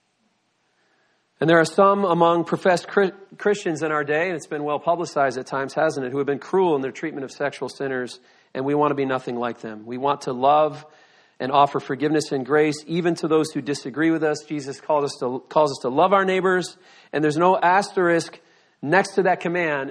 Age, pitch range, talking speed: 40-59, 135-170 Hz, 210 wpm